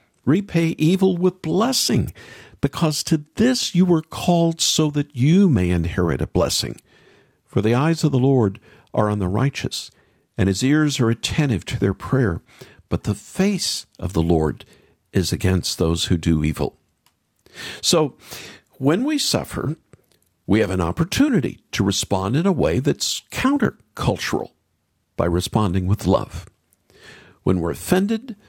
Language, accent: English, American